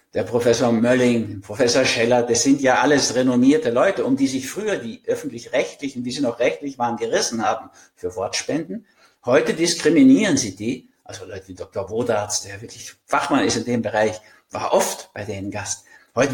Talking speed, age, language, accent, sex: 175 wpm, 60-79, German, German, male